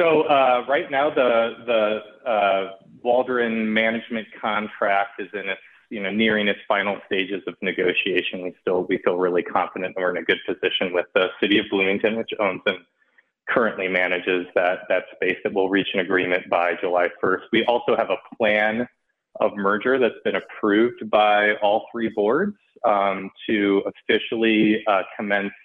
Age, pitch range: 30-49, 95-120 Hz